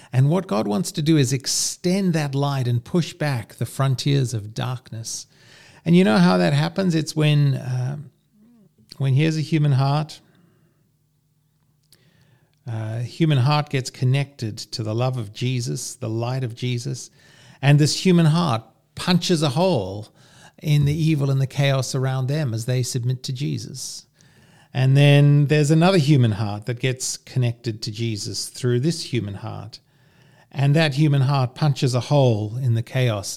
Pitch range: 120-155 Hz